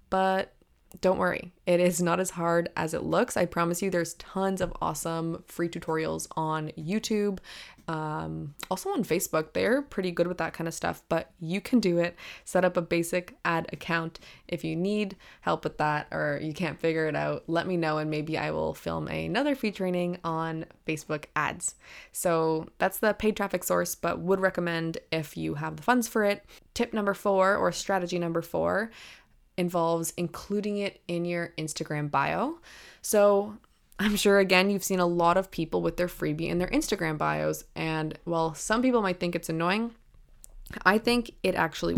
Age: 20-39